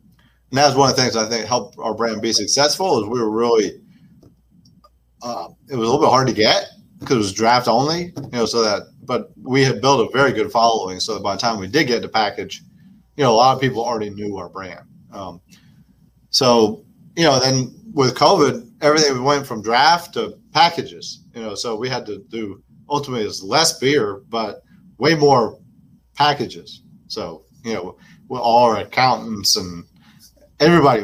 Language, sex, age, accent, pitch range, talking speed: English, male, 40-59, American, 100-130 Hz, 190 wpm